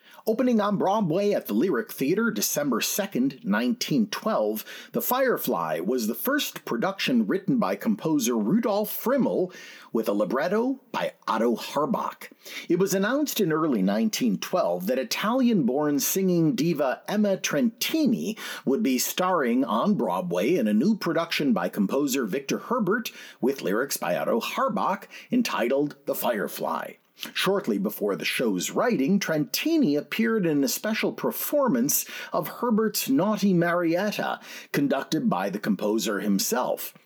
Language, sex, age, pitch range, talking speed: English, male, 50-69, 190-250 Hz, 130 wpm